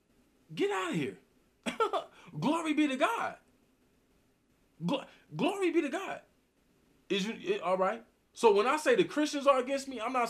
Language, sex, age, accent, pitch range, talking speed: English, male, 20-39, American, 160-225 Hz, 170 wpm